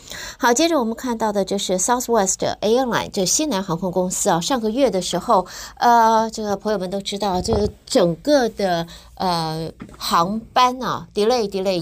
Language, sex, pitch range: Chinese, female, 175-230 Hz